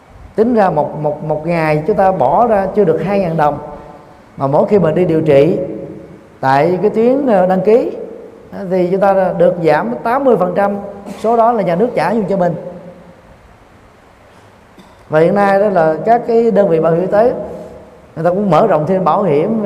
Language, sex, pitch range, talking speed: Vietnamese, male, 145-205 Hz, 190 wpm